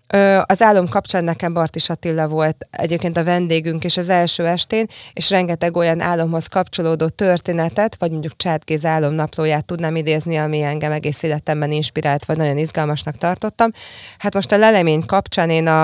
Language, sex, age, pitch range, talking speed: Hungarian, female, 20-39, 160-190 Hz, 160 wpm